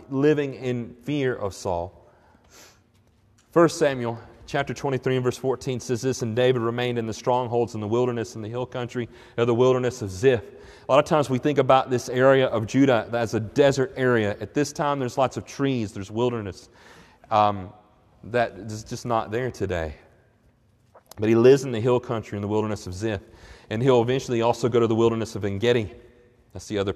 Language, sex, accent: English, male, American